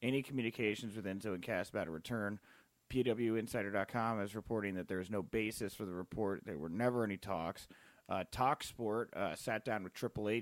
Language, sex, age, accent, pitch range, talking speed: English, male, 30-49, American, 100-120 Hz, 180 wpm